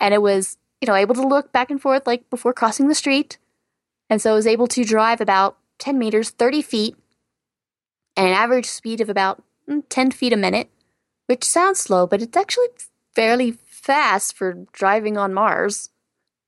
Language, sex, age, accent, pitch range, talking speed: English, female, 20-39, American, 190-245 Hz, 180 wpm